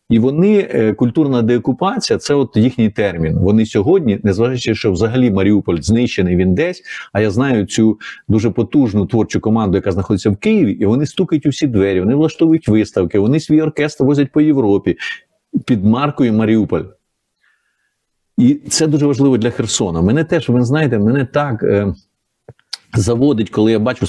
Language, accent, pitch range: Ukrainian, native, 110-145 Hz